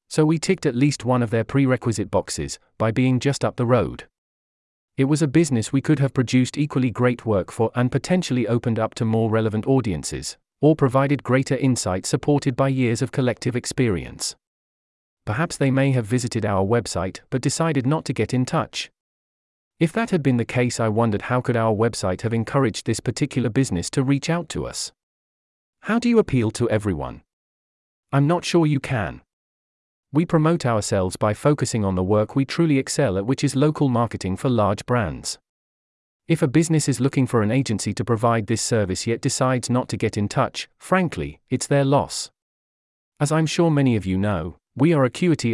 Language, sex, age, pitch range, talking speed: English, male, 40-59, 105-140 Hz, 190 wpm